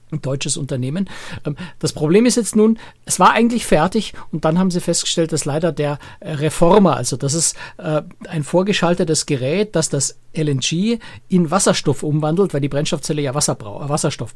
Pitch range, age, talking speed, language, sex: 135-165 Hz, 60-79, 160 wpm, German, male